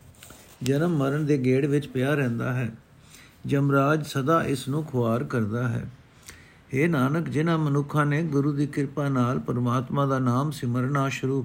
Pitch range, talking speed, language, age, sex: 130-155 Hz, 150 wpm, Punjabi, 50-69, male